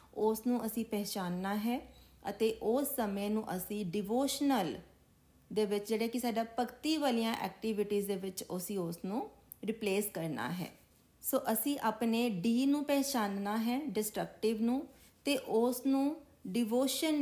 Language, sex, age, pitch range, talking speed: Punjabi, female, 30-49, 210-260 Hz, 140 wpm